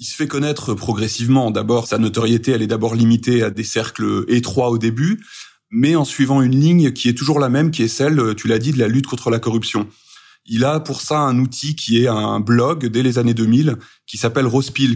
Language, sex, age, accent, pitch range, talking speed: French, male, 30-49, French, 115-135 Hz, 230 wpm